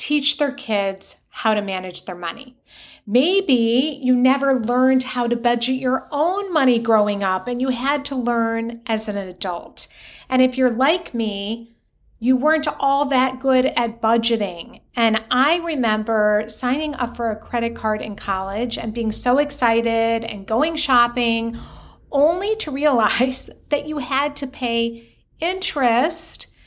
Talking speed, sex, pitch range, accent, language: 150 wpm, female, 220-270 Hz, American, English